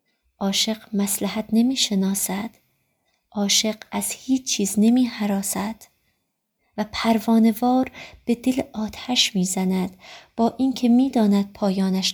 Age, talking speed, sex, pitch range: 30-49, 105 wpm, female, 200-230 Hz